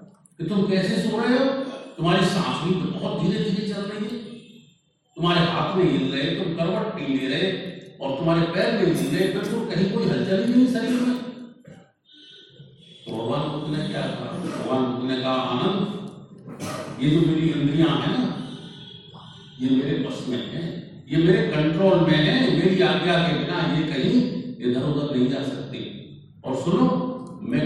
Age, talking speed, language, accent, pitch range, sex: 50-69, 115 wpm, Hindi, native, 145-205 Hz, male